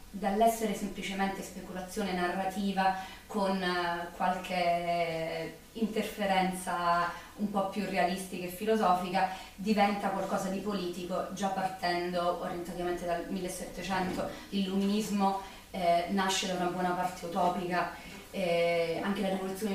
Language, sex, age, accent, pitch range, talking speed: Italian, female, 30-49, native, 180-205 Hz, 105 wpm